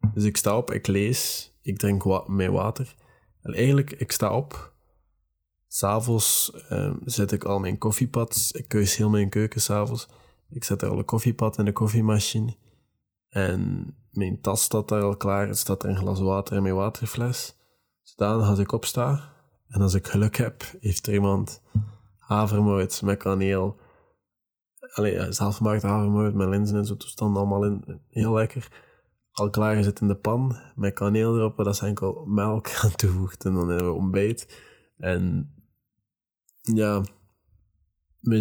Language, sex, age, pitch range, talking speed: Dutch, male, 20-39, 95-110 Hz, 170 wpm